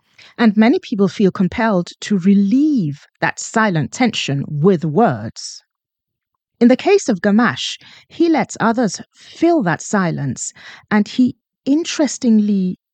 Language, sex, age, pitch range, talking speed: English, female, 40-59, 180-245 Hz, 120 wpm